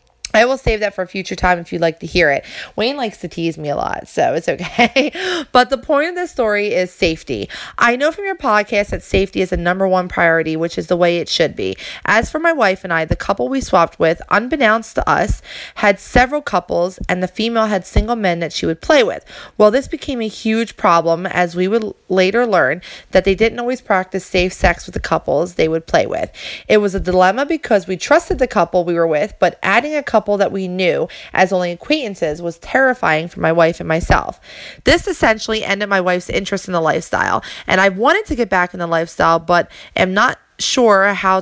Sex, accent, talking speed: female, American, 225 wpm